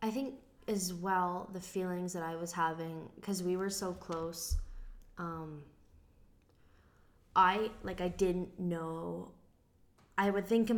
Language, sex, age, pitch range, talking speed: English, female, 20-39, 160-195 Hz, 140 wpm